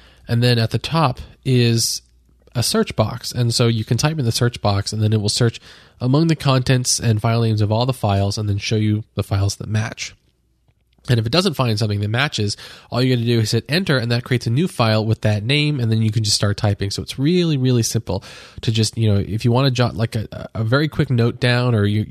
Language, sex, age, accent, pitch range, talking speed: English, male, 20-39, American, 105-125 Hz, 260 wpm